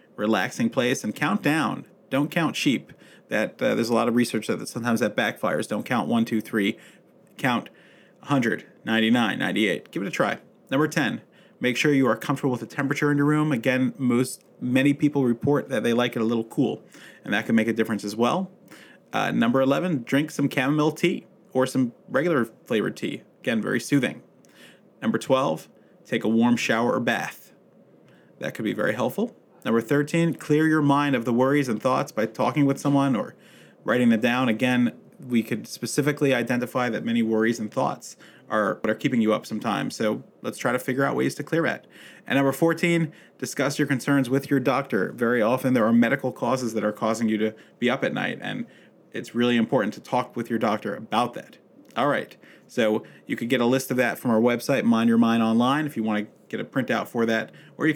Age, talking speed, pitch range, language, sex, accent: 30-49, 210 wpm, 115-145 Hz, English, male, American